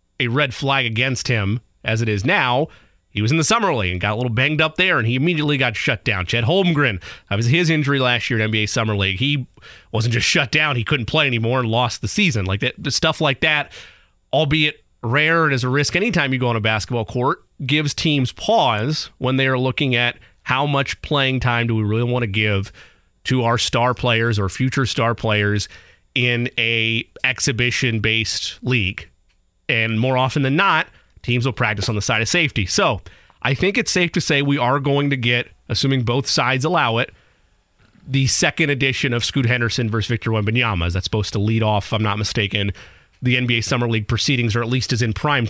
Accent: American